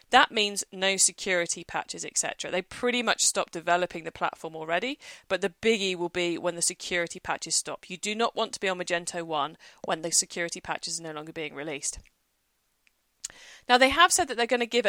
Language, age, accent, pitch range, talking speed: English, 40-59, British, 175-255 Hz, 205 wpm